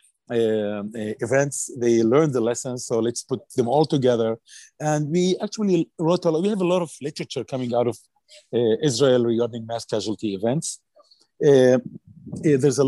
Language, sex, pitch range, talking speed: English, male, 110-140 Hz, 175 wpm